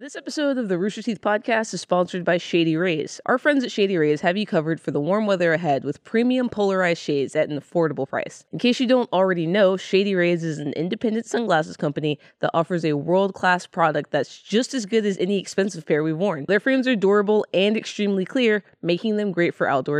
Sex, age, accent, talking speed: female, 20-39, American, 220 wpm